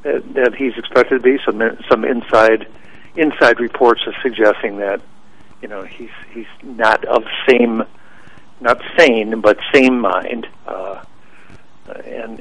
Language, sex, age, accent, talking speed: English, male, 60-79, American, 130 wpm